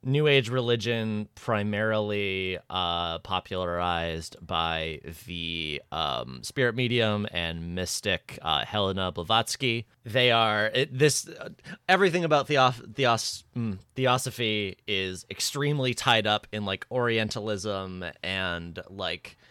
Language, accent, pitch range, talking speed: English, American, 90-120 Hz, 100 wpm